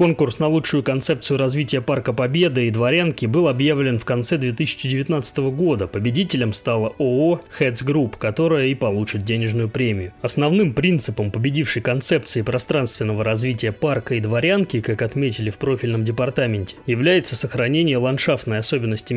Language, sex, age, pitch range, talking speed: Russian, male, 20-39, 115-150 Hz, 135 wpm